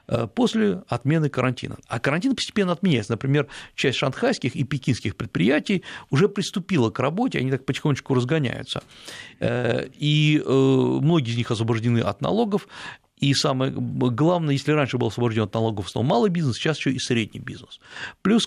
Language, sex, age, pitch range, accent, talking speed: Russian, male, 50-69, 120-160 Hz, native, 150 wpm